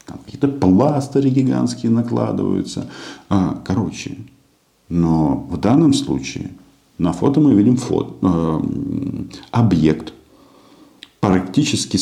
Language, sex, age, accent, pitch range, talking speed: Russian, male, 50-69, native, 80-125 Hz, 80 wpm